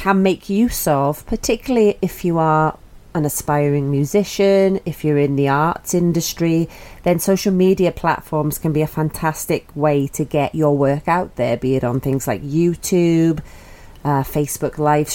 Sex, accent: female, British